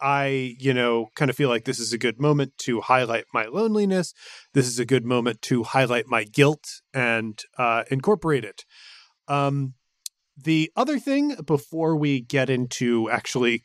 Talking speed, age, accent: 165 wpm, 30-49, American